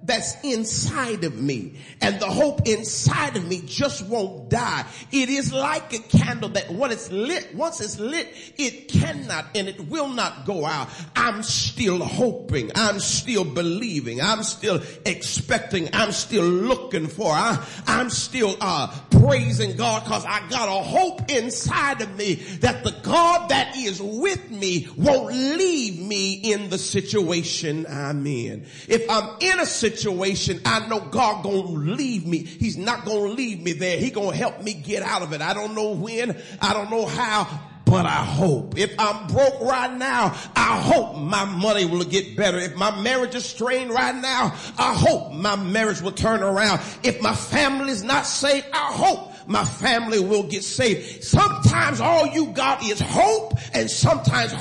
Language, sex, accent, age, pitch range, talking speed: English, male, American, 40-59, 175-250 Hz, 175 wpm